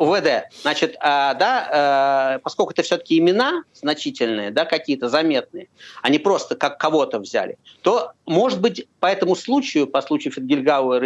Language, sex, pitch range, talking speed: Russian, male, 180-280 Hz, 140 wpm